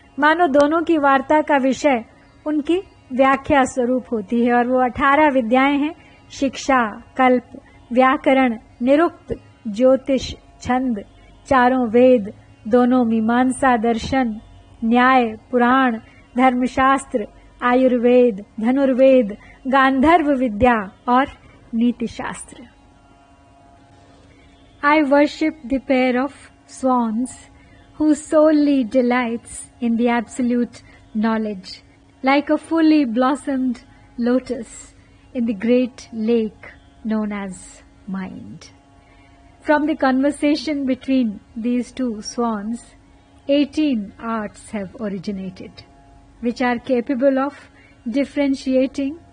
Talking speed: 90 wpm